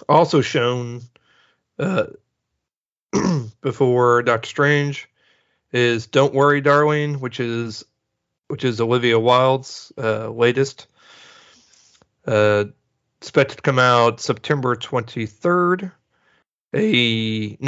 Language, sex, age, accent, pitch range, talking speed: English, male, 40-59, American, 115-145 Hz, 90 wpm